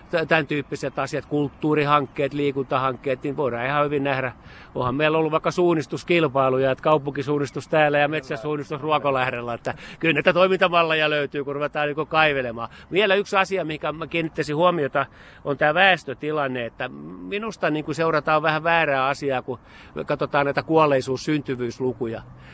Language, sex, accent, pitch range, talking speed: Finnish, male, native, 130-160 Hz, 140 wpm